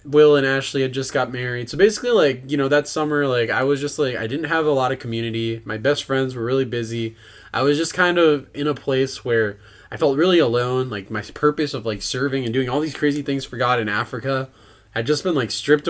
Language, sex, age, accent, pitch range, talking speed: English, male, 20-39, American, 115-145 Hz, 250 wpm